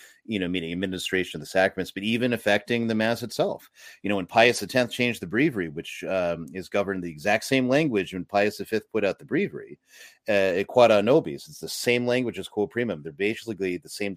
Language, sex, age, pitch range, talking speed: English, male, 30-49, 95-115 Hz, 210 wpm